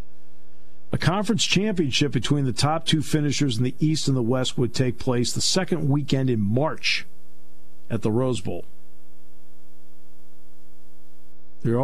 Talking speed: 135 wpm